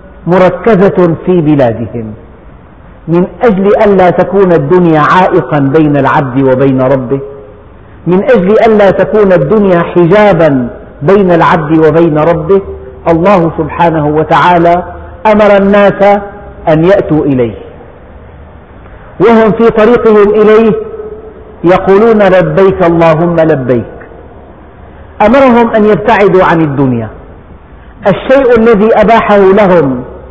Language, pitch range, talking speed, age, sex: Arabic, 135-200 Hz, 95 wpm, 50-69, male